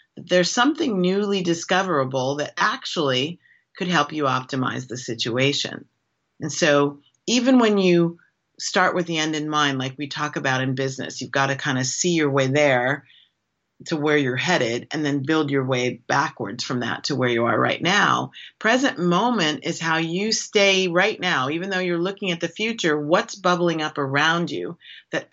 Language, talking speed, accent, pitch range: English, 180 wpm, American, 135-170 Hz